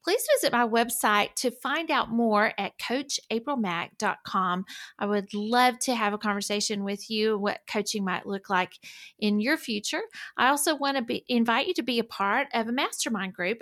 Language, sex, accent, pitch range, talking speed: English, female, American, 200-250 Hz, 180 wpm